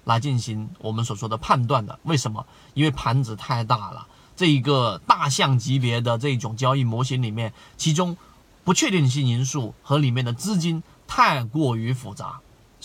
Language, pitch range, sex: Chinese, 115-145 Hz, male